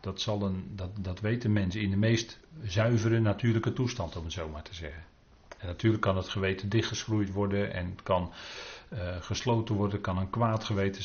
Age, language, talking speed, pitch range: 40-59, Dutch, 170 wpm, 95-120 Hz